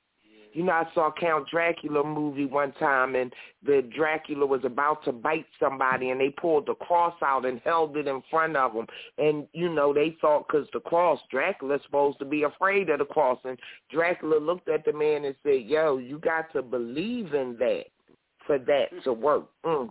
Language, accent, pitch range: English, American, 145-175 Hz